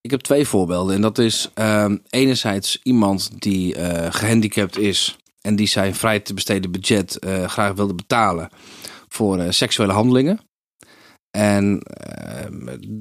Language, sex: Dutch, male